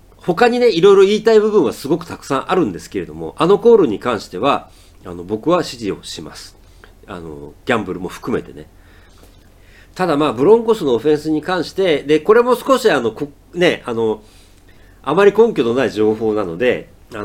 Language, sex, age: Japanese, male, 40-59